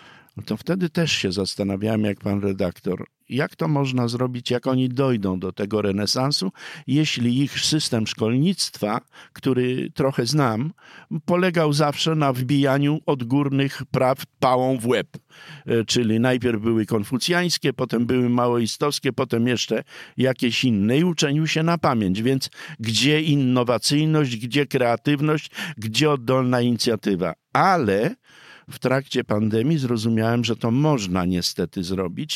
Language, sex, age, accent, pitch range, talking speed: Polish, male, 50-69, native, 105-135 Hz, 125 wpm